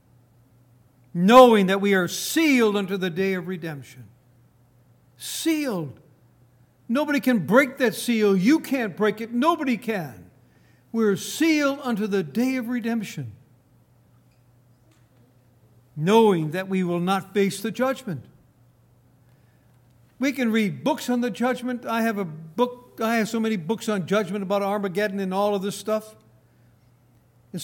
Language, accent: English, American